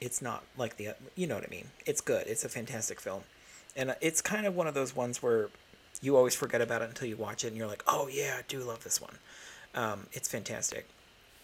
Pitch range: 110-155 Hz